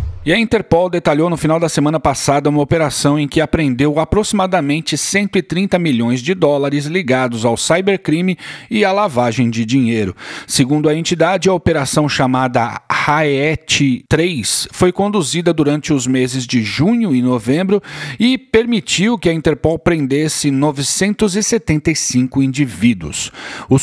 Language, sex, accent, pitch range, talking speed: Portuguese, male, Brazilian, 135-185 Hz, 135 wpm